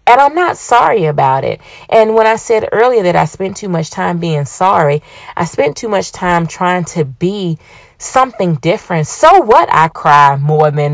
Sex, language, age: female, English, 30-49